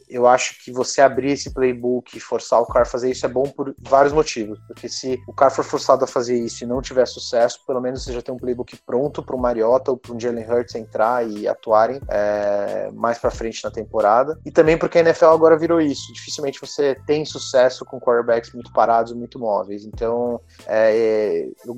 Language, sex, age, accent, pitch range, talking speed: Portuguese, male, 20-39, Brazilian, 115-140 Hz, 215 wpm